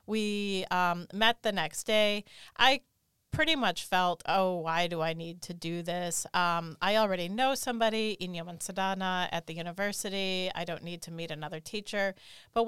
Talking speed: 170 wpm